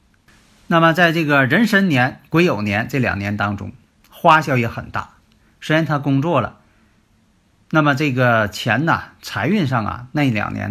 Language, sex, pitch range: Chinese, male, 110-170 Hz